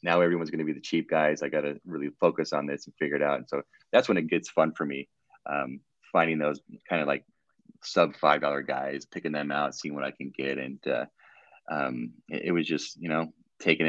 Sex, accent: male, American